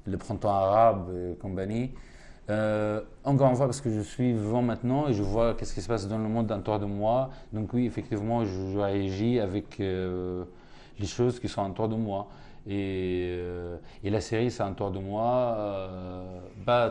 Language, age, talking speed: French, 30-49, 190 wpm